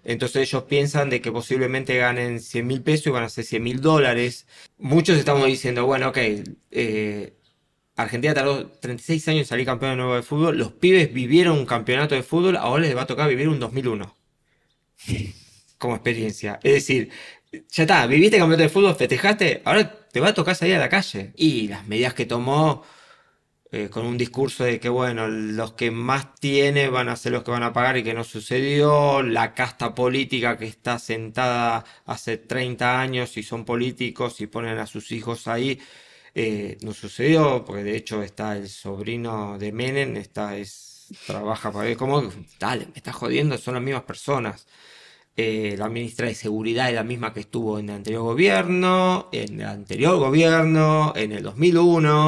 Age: 20-39